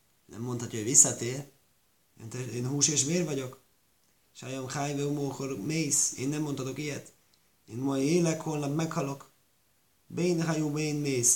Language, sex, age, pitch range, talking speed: Hungarian, male, 30-49, 110-140 Hz, 135 wpm